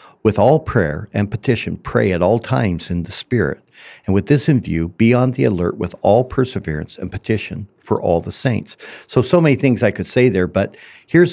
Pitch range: 95-125 Hz